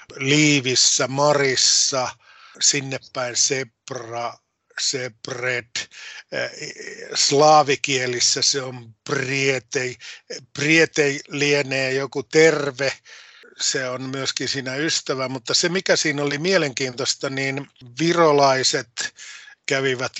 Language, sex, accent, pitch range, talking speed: Finnish, male, native, 125-150 Hz, 80 wpm